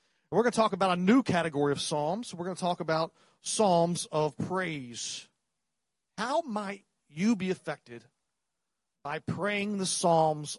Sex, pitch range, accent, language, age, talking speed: male, 160-210 Hz, American, English, 40-59, 155 wpm